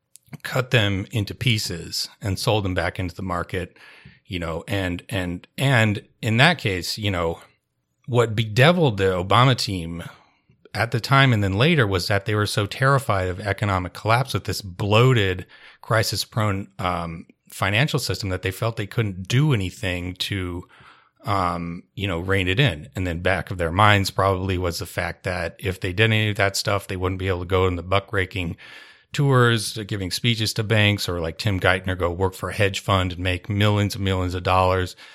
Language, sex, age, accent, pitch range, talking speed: English, male, 30-49, American, 90-110 Hz, 195 wpm